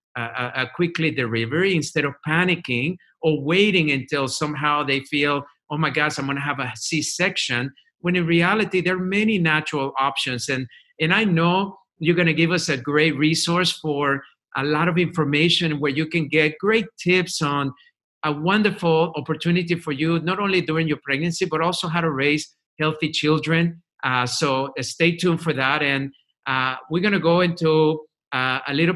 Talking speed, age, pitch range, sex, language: 180 wpm, 50-69, 140-170 Hz, male, English